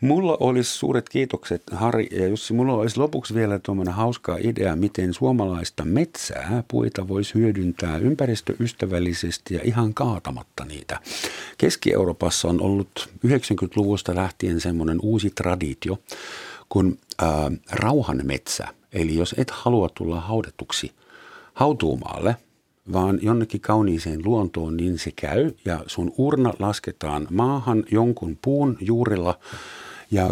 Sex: male